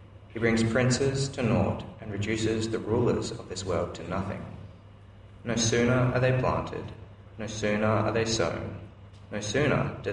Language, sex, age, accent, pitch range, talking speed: English, male, 20-39, Australian, 100-120 Hz, 160 wpm